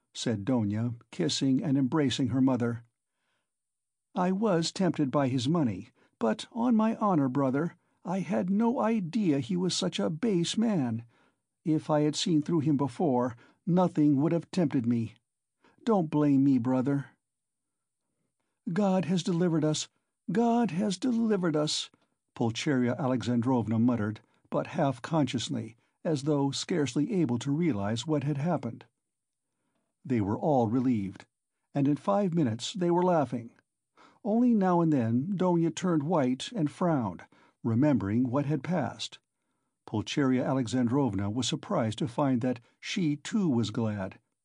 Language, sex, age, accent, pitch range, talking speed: English, male, 60-79, American, 125-175 Hz, 135 wpm